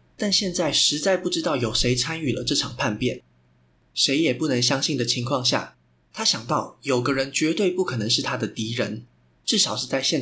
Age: 20-39